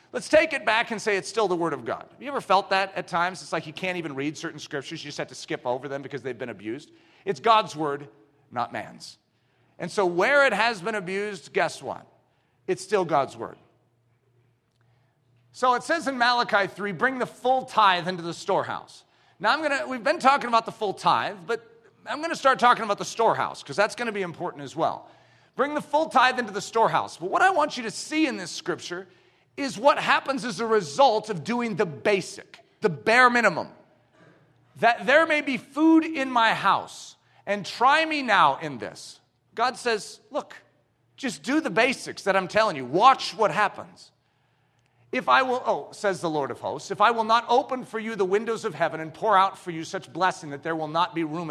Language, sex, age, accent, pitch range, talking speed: English, male, 40-59, American, 165-250 Hz, 215 wpm